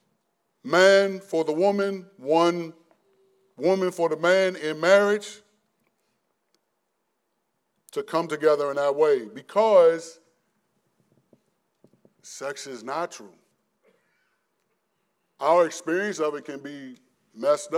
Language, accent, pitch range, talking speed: English, American, 120-190 Hz, 100 wpm